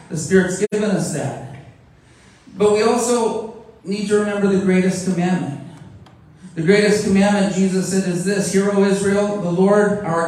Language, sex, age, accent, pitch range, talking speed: English, male, 40-59, American, 160-195 Hz, 160 wpm